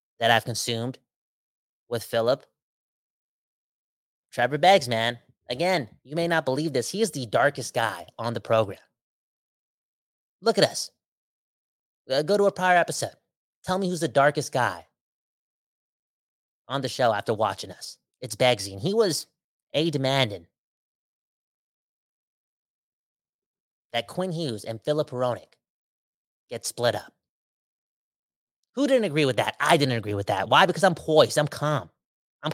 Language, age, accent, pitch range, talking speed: English, 30-49, American, 120-170 Hz, 135 wpm